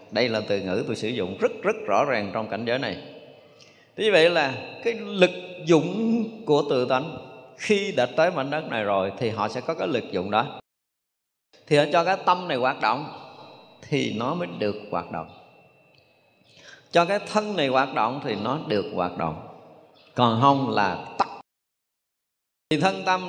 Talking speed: 180 wpm